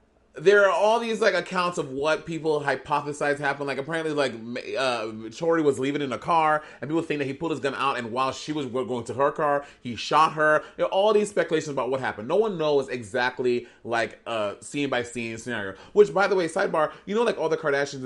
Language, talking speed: English, 220 wpm